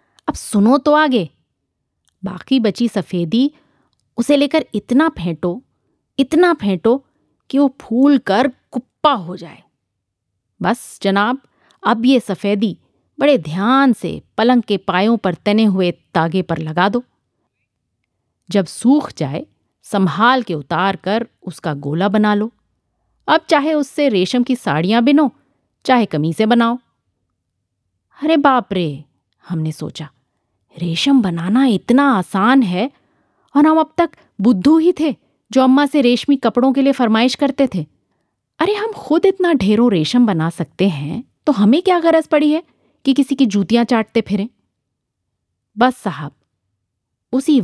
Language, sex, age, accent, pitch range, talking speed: Hindi, female, 30-49, native, 165-260 Hz, 140 wpm